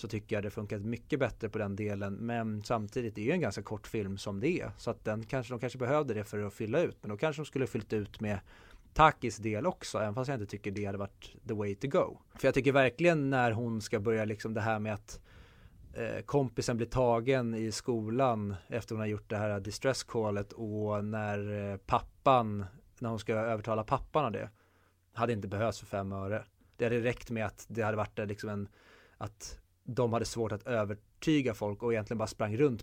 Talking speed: 225 wpm